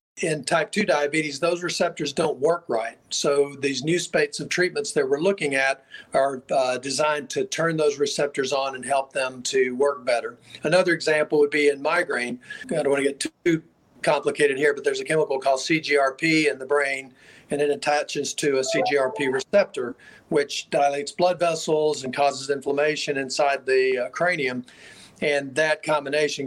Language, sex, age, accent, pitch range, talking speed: English, male, 40-59, American, 140-155 Hz, 175 wpm